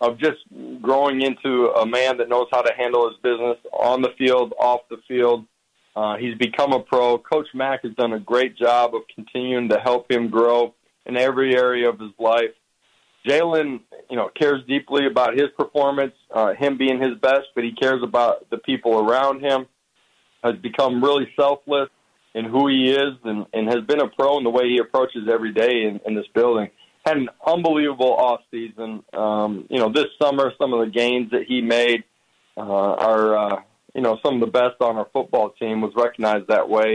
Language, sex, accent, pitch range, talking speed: English, male, American, 115-130 Hz, 200 wpm